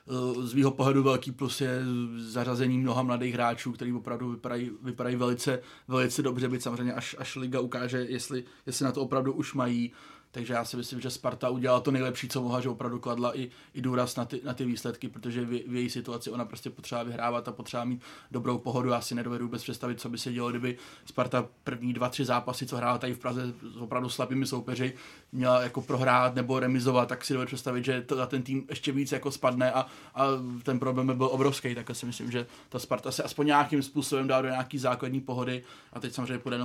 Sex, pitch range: male, 120-130 Hz